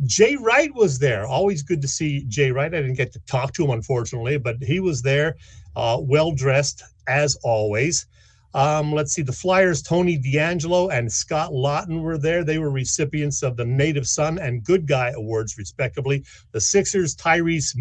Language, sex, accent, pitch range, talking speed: English, male, American, 125-175 Hz, 180 wpm